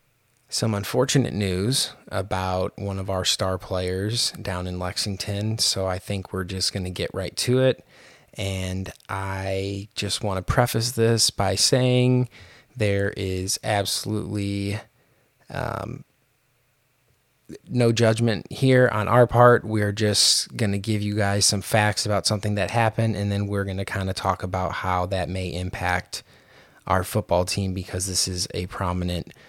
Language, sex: English, male